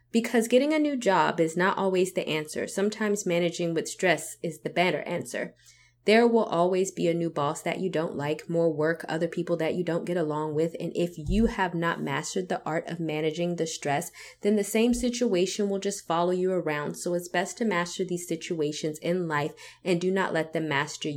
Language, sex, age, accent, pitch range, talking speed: English, female, 20-39, American, 160-185 Hz, 215 wpm